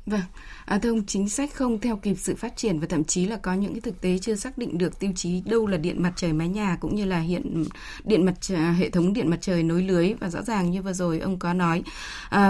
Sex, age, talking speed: female, 20-39, 280 wpm